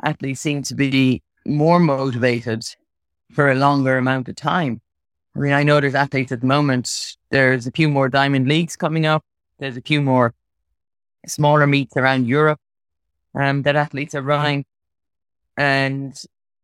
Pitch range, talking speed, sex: 120-145 Hz, 155 wpm, male